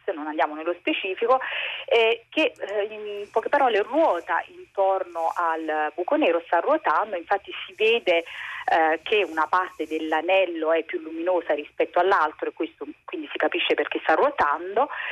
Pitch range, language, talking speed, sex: 165-210 Hz, Italian, 150 wpm, female